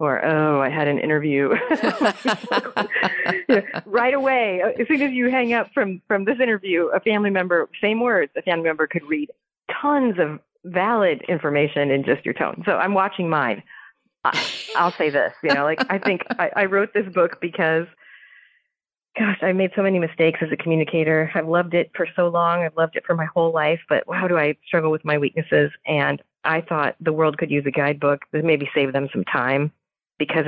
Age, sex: 30-49, female